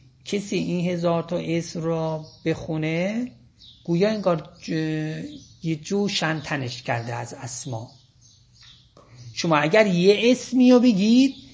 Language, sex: Persian, male